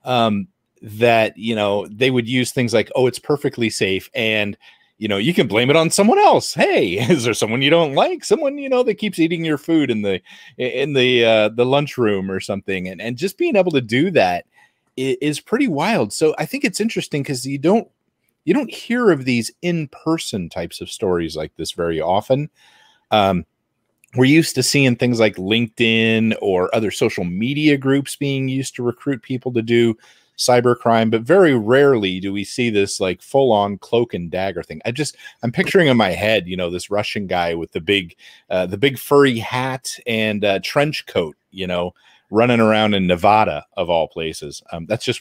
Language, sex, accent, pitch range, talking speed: English, male, American, 105-145 Hz, 200 wpm